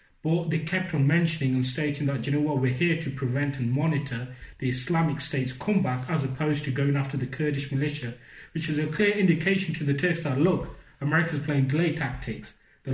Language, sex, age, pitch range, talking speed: English, male, 20-39, 135-160 Hz, 210 wpm